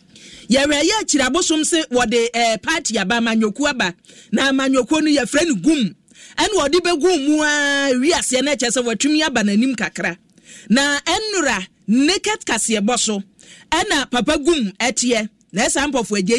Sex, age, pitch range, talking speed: male, 40-59, 230-305 Hz, 155 wpm